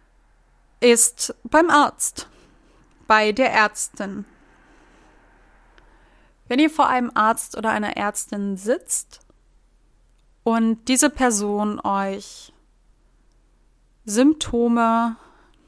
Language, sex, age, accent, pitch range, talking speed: German, female, 30-49, German, 210-240 Hz, 75 wpm